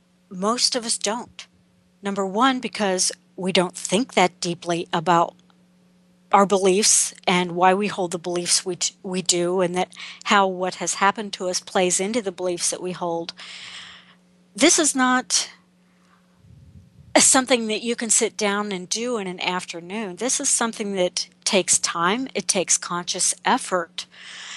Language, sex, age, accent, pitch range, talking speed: English, female, 40-59, American, 180-220 Hz, 155 wpm